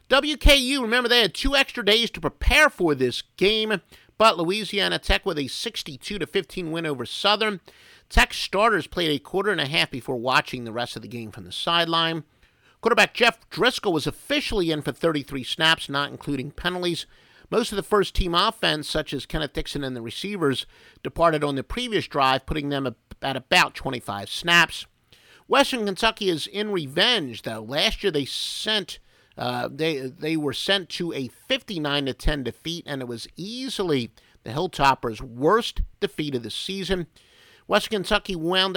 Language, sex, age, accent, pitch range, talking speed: English, male, 50-69, American, 140-200 Hz, 165 wpm